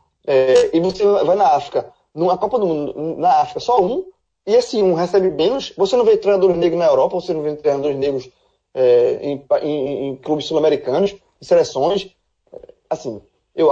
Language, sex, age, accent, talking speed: Portuguese, male, 20-39, Brazilian, 180 wpm